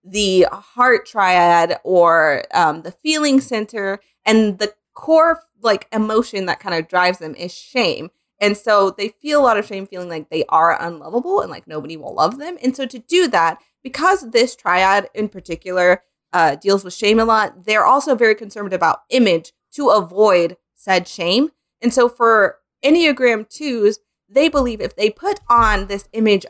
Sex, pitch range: female, 185-255 Hz